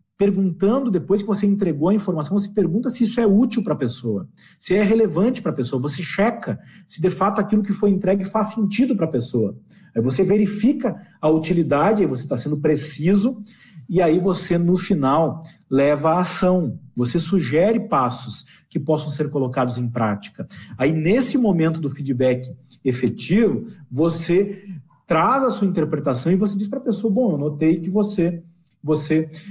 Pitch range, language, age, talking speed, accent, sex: 155-200 Hz, Portuguese, 40-59, 175 wpm, Brazilian, male